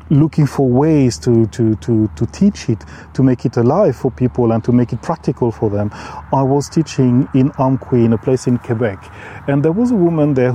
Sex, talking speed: male, 215 wpm